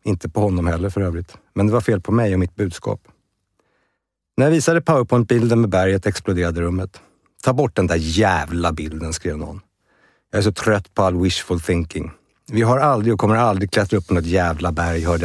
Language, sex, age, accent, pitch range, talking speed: Swedish, male, 60-79, native, 85-105 Hz, 205 wpm